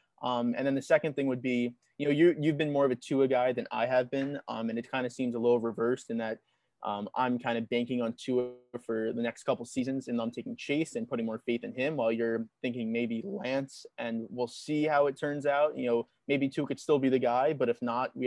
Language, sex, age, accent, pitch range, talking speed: English, male, 20-39, American, 120-135 Hz, 265 wpm